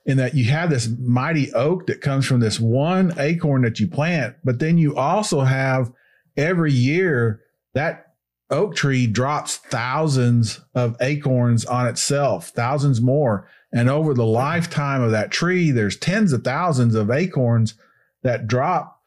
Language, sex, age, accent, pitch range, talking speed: English, male, 40-59, American, 125-160 Hz, 155 wpm